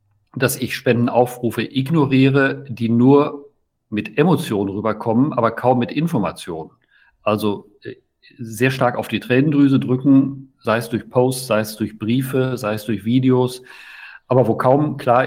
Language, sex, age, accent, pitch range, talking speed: German, male, 50-69, German, 115-130 Hz, 140 wpm